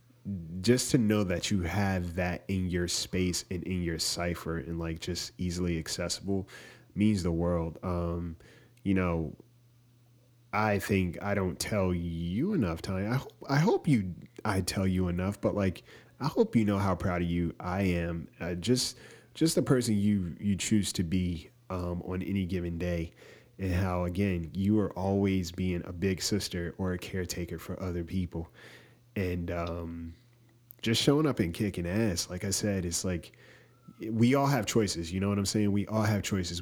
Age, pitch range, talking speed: 30-49, 85-105 Hz, 180 wpm